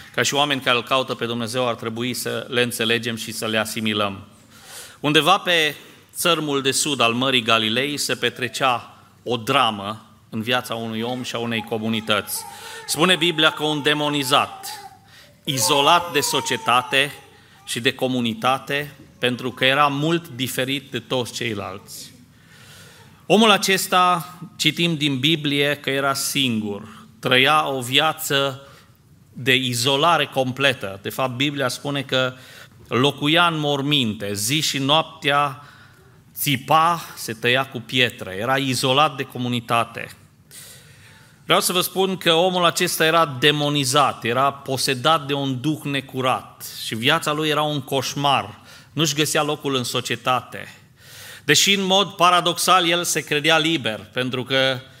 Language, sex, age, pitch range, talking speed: Romanian, male, 40-59, 125-155 Hz, 135 wpm